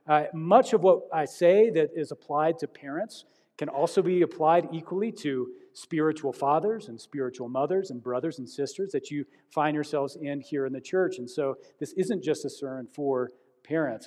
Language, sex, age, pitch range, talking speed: English, male, 40-59, 140-170 Hz, 190 wpm